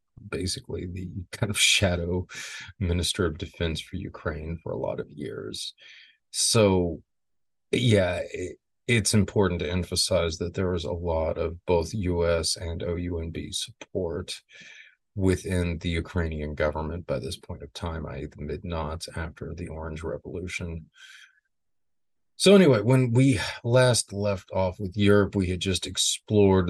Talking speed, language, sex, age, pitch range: 140 wpm, English, male, 40-59, 85-100 Hz